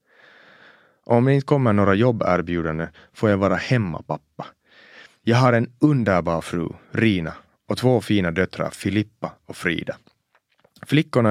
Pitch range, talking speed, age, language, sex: 85-115 Hz, 140 wpm, 30-49, Swedish, male